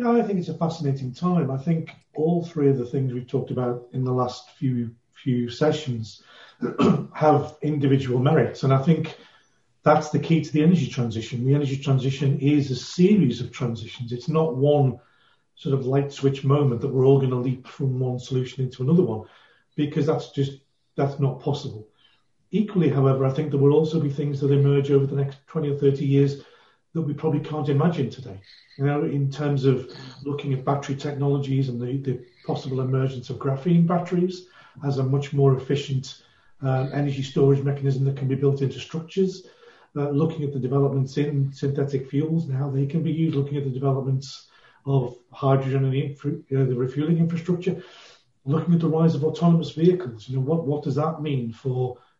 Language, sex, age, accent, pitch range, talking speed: English, male, 40-59, British, 130-150 Hz, 195 wpm